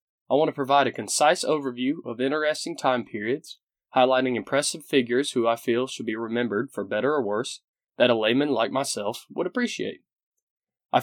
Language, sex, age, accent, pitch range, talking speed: English, male, 20-39, American, 120-145 Hz, 175 wpm